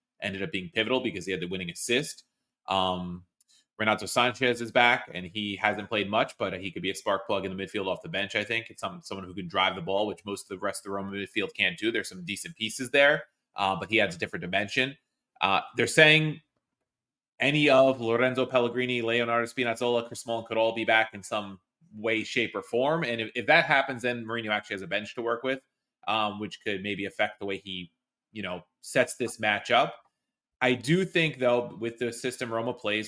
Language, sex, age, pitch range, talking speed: English, male, 30-49, 100-125 Hz, 225 wpm